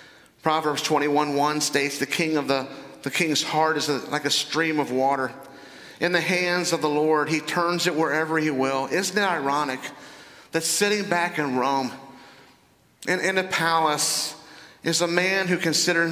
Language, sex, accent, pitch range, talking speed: English, male, American, 145-175 Hz, 165 wpm